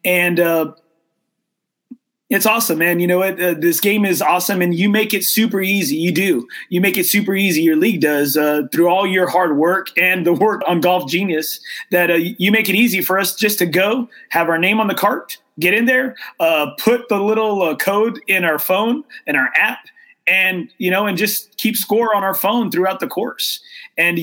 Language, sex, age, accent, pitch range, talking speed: English, male, 30-49, American, 170-210 Hz, 215 wpm